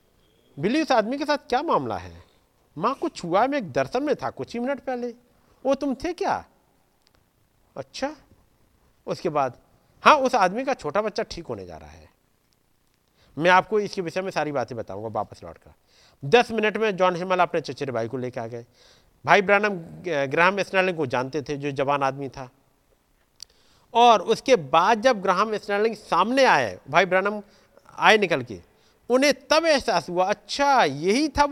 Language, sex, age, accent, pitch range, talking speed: Hindi, male, 50-69, native, 160-245 Hz, 170 wpm